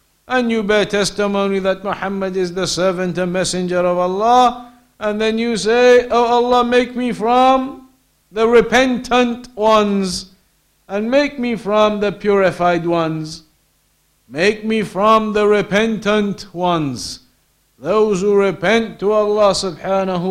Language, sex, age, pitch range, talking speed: English, male, 50-69, 170-205 Hz, 130 wpm